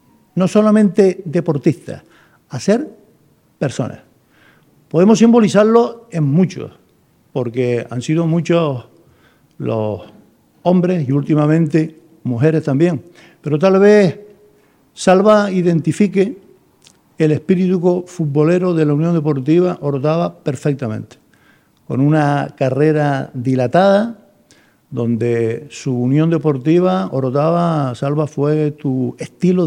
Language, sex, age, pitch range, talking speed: Spanish, male, 50-69, 140-185 Hz, 95 wpm